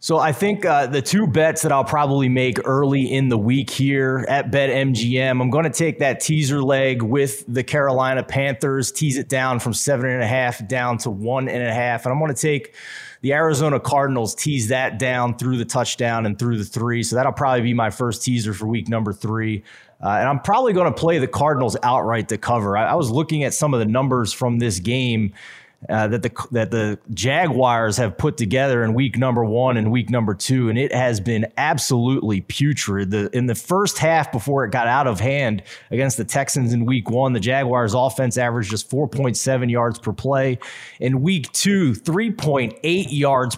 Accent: American